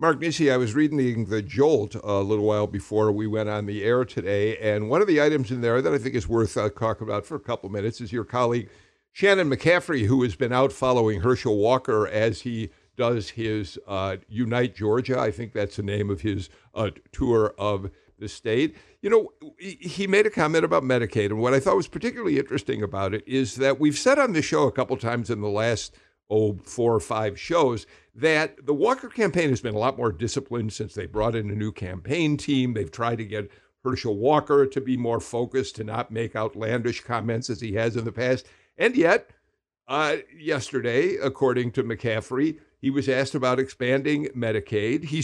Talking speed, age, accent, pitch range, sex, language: 205 wpm, 60-79, American, 110-145 Hz, male, English